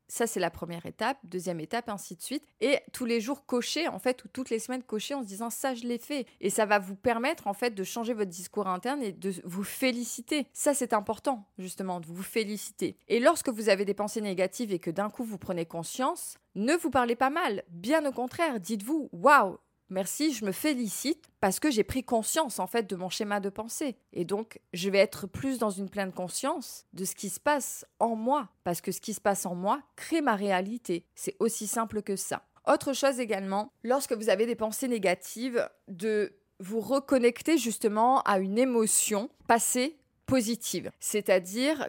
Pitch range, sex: 190-255 Hz, female